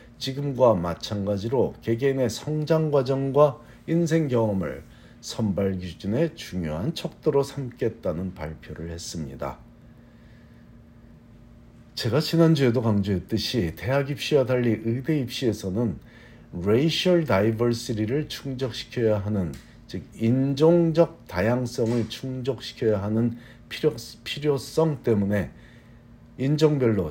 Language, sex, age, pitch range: Korean, male, 50-69, 100-135 Hz